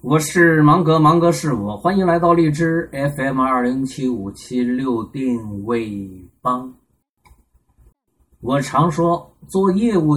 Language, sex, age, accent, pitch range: Chinese, male, 20-39, native, 105-155 Hz